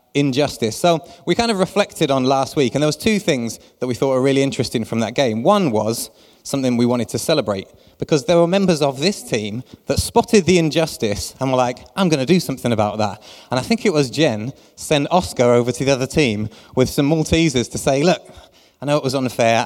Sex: male